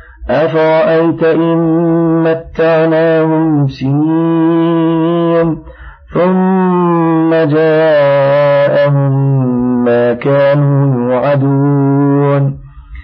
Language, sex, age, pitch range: Arabic, male, 50-69, 120-155 Hz